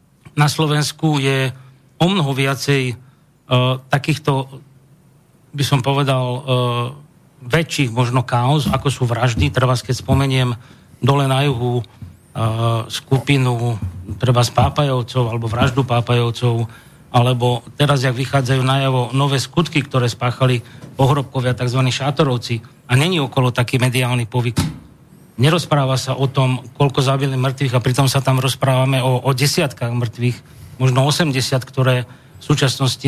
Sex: male